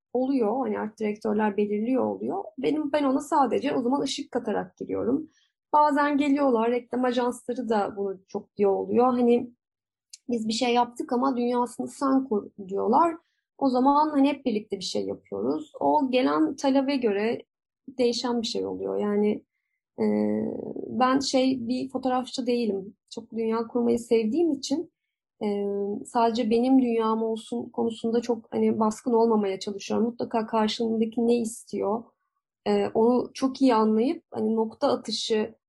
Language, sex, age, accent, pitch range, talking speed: Turkish, female, 30-49, native, 215-260 Hz, 145 wpm